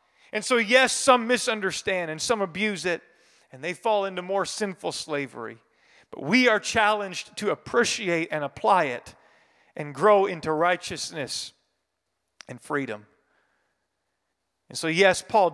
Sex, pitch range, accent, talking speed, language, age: male, 150-195 Hz, American, 135 wpm, English, 40-59